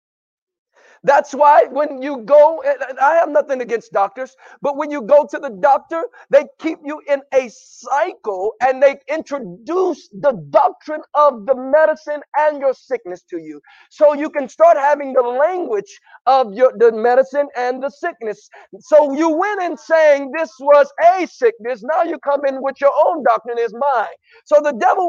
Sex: male